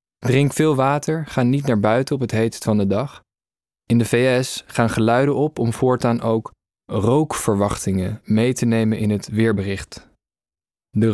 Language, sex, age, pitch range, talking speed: Dutch, male, 20-39, 110-135 Hz, 160 wpm